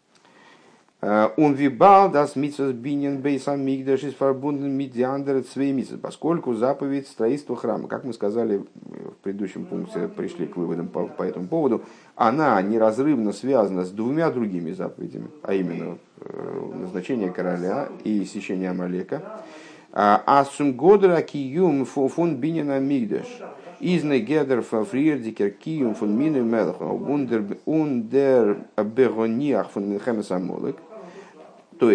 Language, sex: Russian, male